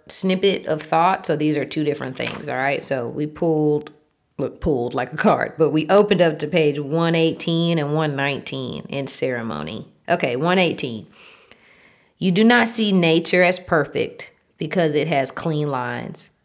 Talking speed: 155 wpm